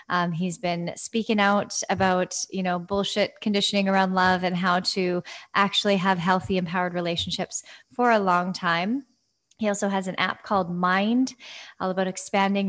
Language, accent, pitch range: English, American, 185-215 Hz